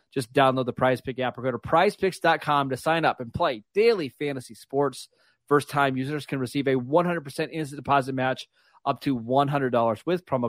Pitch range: 120-145 Hz